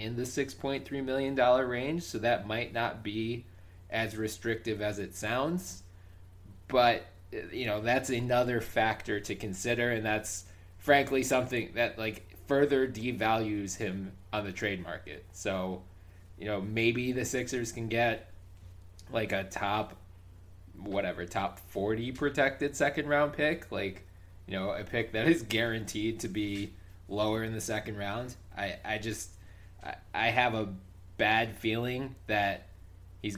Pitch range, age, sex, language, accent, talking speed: 90-115 Hz, 20-39, male, English, American, 145 wpm